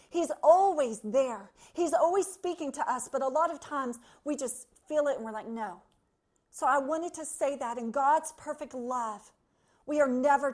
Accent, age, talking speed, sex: American, 40-59, 195 wpm, female